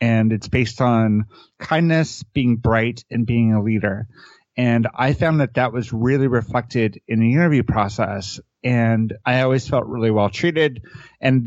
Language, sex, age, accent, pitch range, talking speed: English, male, 30-49, American, 110-125 Hz, 155 wpm